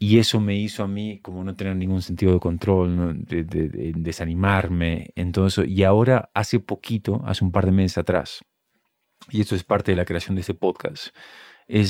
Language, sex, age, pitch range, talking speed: English, male, 30-49, 95-115 Hz, 200 wpm